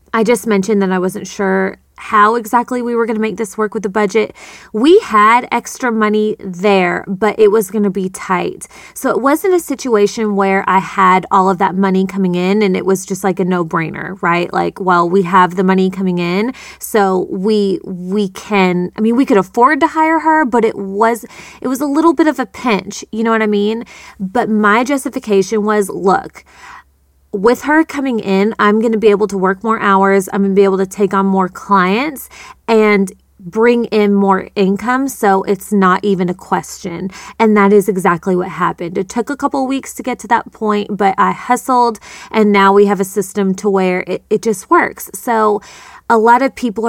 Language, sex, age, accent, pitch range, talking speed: English, female, 20-39, American, 195-235 Hz, 210 wpm